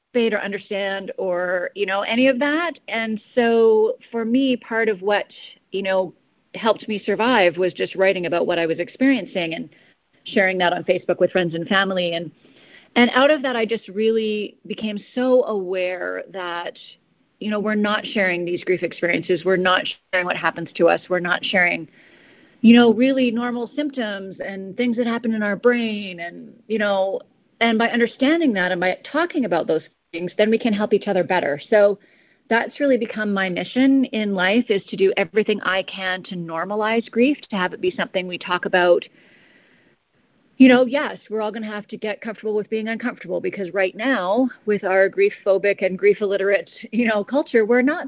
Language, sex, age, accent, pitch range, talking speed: English, female, 40-59, American, 185-230 Hz, 190 wpm